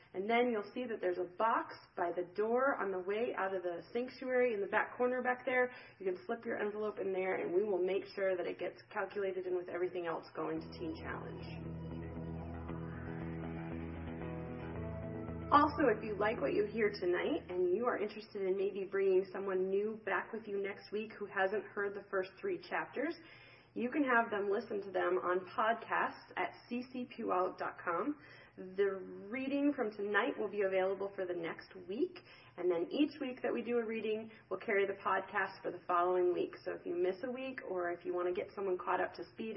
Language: English